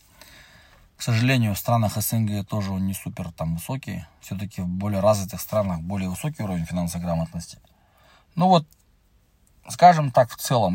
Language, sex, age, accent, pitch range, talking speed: Russian, male, 20-39, native, 90-115 Hz, 155 wpm